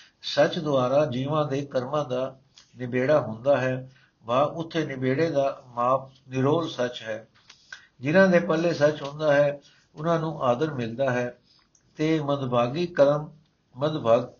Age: 60-79